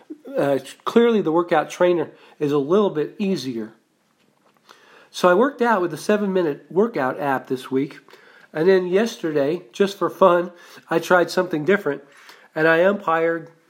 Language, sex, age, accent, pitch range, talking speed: English, male, 40-59, American, 145-175 Hz, 150 wpm